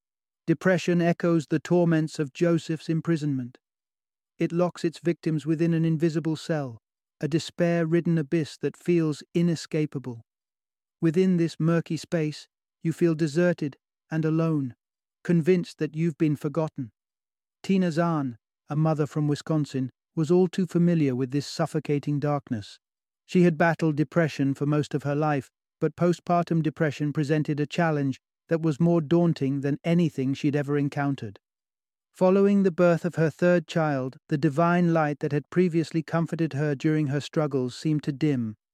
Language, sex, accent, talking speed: English, male, British, 145 wpm